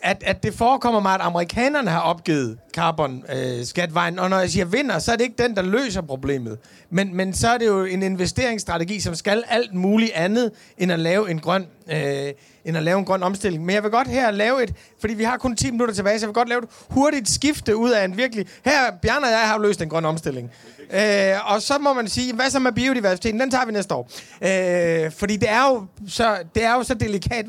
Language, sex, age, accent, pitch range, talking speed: Danish, male, 30-49, native, 170-225 Hz, 240 wpm